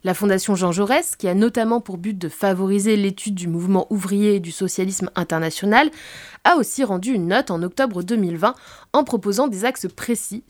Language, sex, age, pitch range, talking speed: French, female, 20-39, 185-240 Hz, 185 wpm